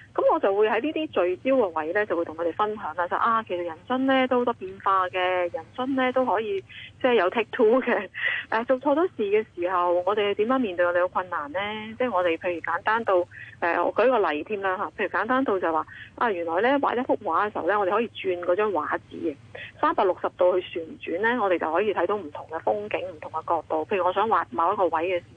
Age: 30-49